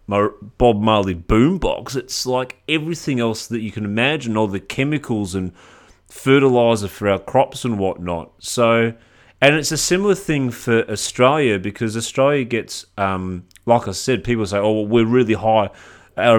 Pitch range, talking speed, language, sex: 100-120 Hz, 165 wpm, English, male